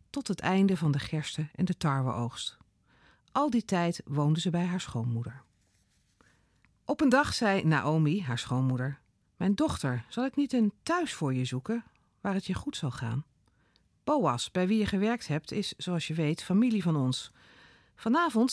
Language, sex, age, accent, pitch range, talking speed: Dutch, female, 40-59, Dutch, 135-205 Hz, 175 wpm